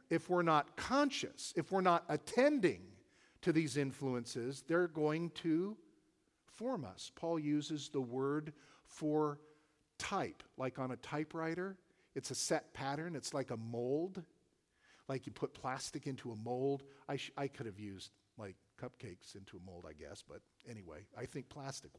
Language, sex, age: English, male, 50-69